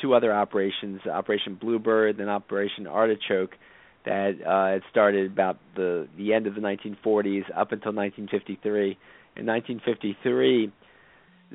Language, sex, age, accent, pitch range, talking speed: English, male, 40-59, American, 95-110 Hz, 120 wpm